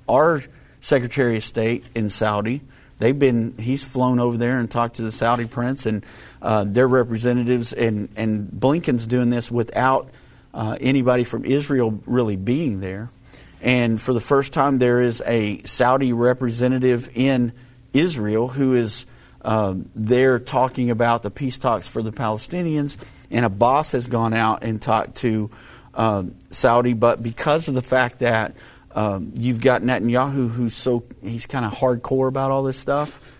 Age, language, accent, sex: 50-69, English, American, male